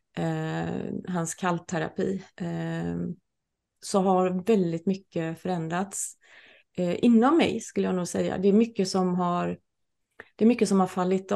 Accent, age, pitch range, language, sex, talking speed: native, 30-49, 175-200 Hz, Swedish, female, 125 wpm